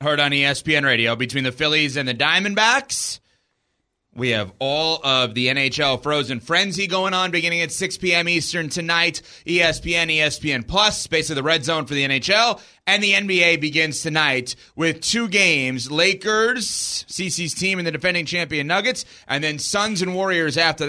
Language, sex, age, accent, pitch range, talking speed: English, male, 30-49, American, 145-195 Hz, 165 wpm